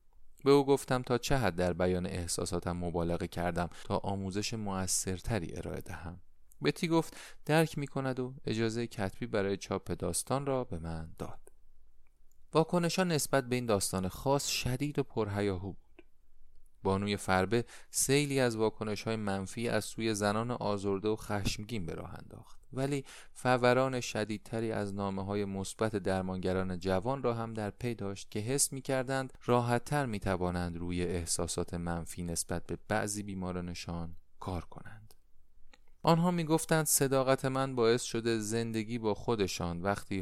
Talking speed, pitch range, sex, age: 140 wpm, 90-125 Hz, male, 30-49